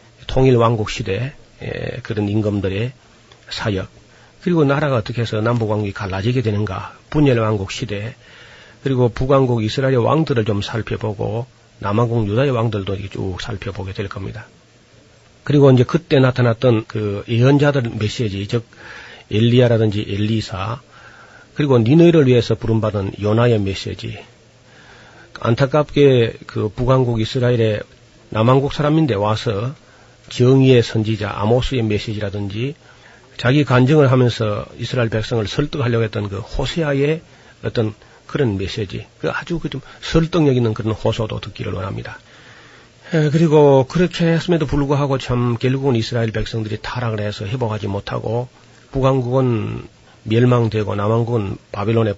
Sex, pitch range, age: male, 110-130 Hz, 40-59